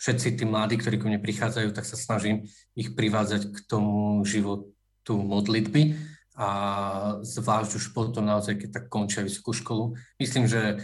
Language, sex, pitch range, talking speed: Slovak, male, 105-125 Hz, 155 wpm